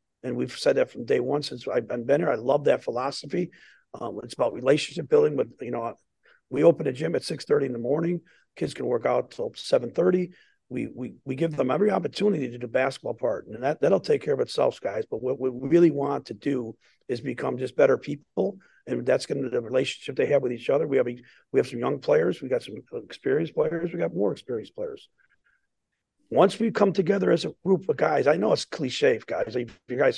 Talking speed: 235 wpm